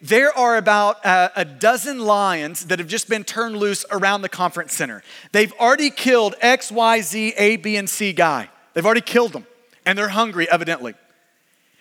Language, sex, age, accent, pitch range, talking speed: English, male, 30-49, American, 205-285 Hz, 180 wpm